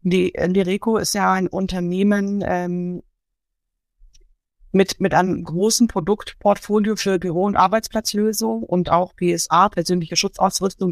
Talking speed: 115 wpm